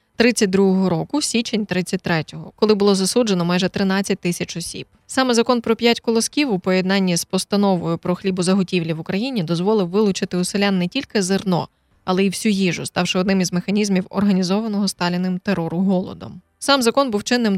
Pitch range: 175-205 Hz